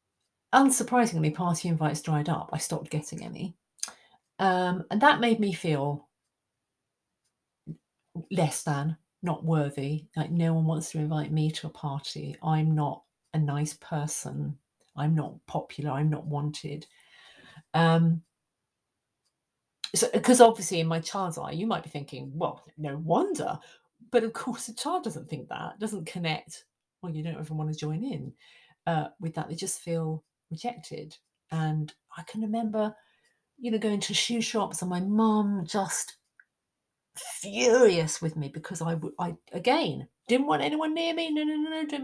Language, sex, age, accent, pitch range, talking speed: English, female, 40-59, British, 155-200 Hz, 160 wpm